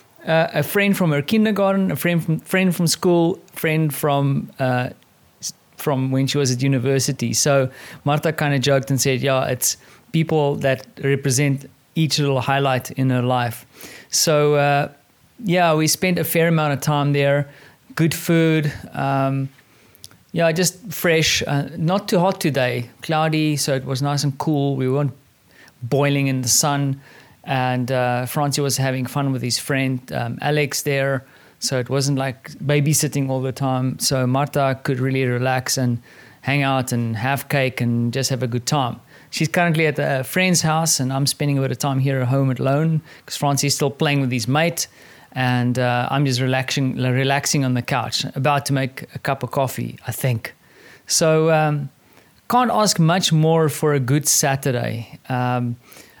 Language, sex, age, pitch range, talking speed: English, male, 30-49, 130-155 Hz, 175 wpm